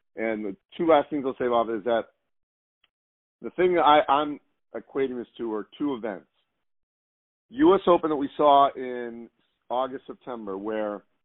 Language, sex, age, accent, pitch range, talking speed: English, male, 40-59, American, 110-145 Hz, 155 wpm